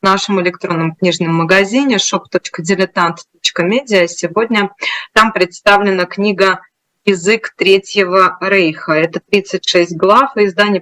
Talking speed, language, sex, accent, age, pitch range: 95 wpm, Russian, female, native, 20-39, 175-205 Hz